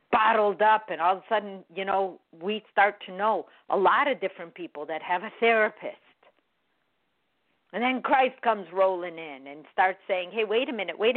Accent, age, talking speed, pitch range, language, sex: American, 50-69, 195 wpm, 200-260 Hz, English, female